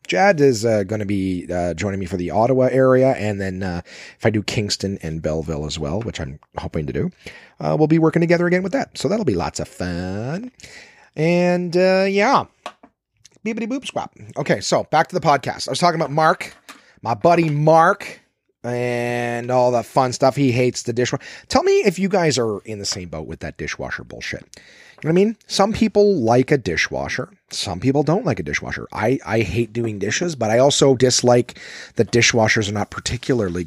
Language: English